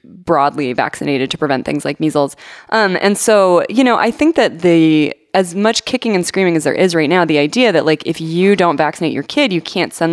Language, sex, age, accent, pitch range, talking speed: English, female, 20-39, American, 150-180 Hz, 230 wpm